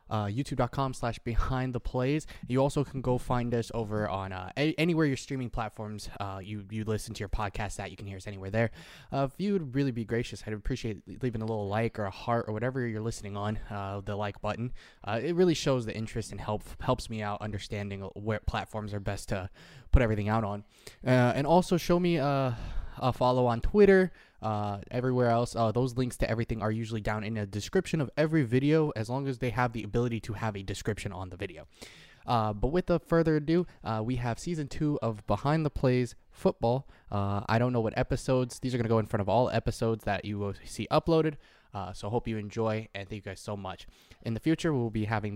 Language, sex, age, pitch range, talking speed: English, male, 20-39, 105-130 Hz, 230 wpm